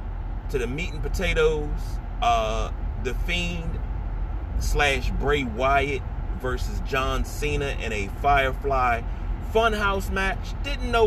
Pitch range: 85-135 Hz